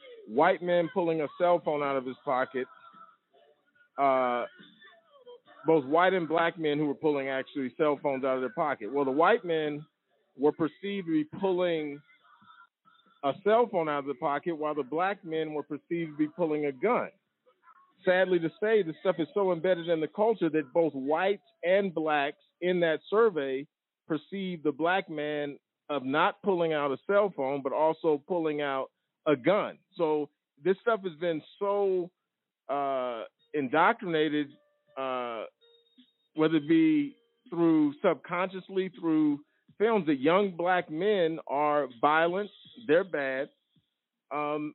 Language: English